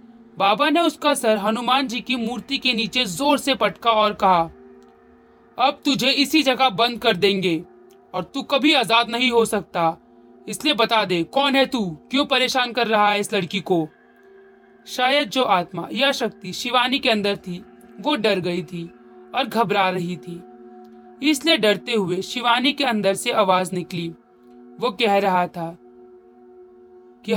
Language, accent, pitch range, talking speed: Hindi, native, 175-250 Hz, 160 wpm